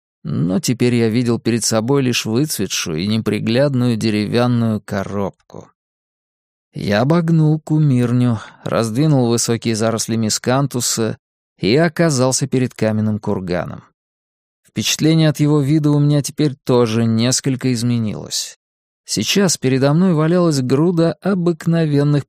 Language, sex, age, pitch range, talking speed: Russian, male, 20-39, 115-150 Hz, 110 wpm